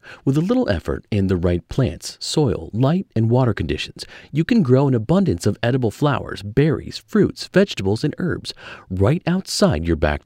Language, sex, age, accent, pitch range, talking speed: English, male, 40-59, American, 90-145 Hz, 175 wpm